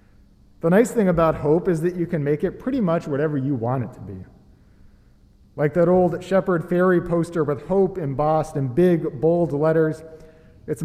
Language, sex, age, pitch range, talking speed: English, male, 40-59, 125-180 Hz, 185 wpm